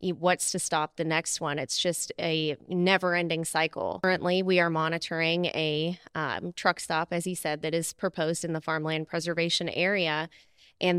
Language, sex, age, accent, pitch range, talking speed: English, female, 20-39, American, 165-190 Hz, 170 wpm